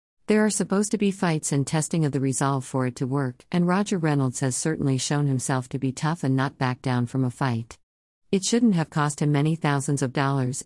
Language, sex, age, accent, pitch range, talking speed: English, female, 50-69, American, 130-155 Hz, 230 wpm